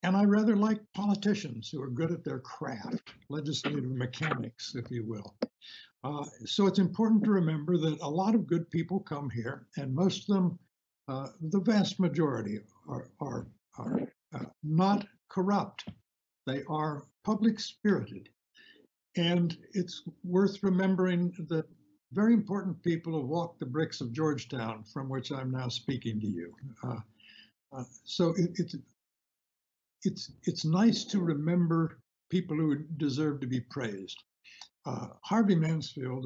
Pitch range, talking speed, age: 130-180 Hz, 145 wpm, 60-79